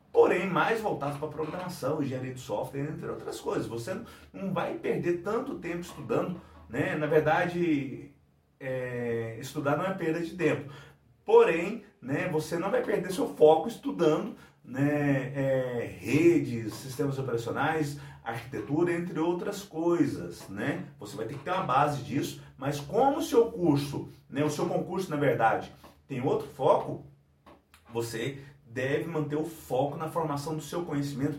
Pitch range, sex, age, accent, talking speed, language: 140-200 Hz, male, 40-59, Brazilian, 145 wpm, Portuguese